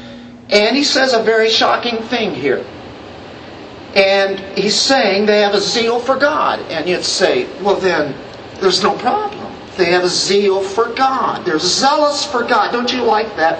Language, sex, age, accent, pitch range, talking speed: English, male, 50-69, American, 170-245 Hz, 170 wpm